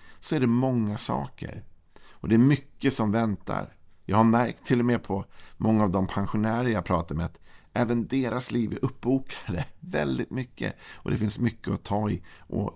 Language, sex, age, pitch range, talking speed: Swedish, male, 50-69, 90-110 Hz, 195 wpm